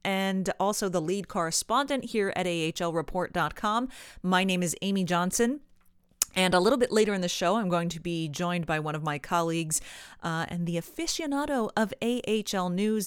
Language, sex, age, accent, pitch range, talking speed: English, female, 30-49, American, 165-215 Hz, 175 wpm